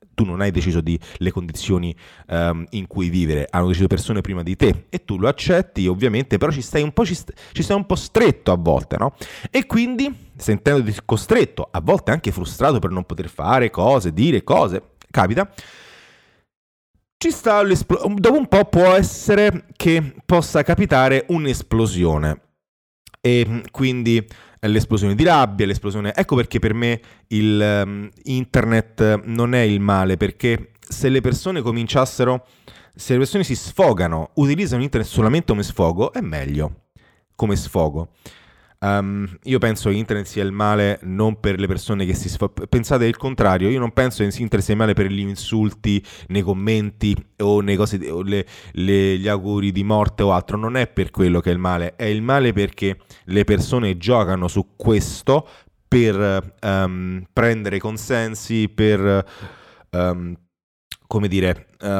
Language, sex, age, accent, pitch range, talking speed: Italian, male, 30-49, native, 95-120 Hz, 165 wpm